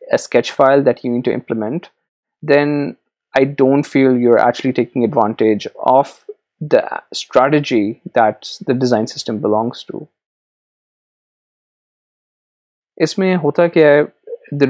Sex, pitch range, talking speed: male, 120-145 Hz, 110 wpm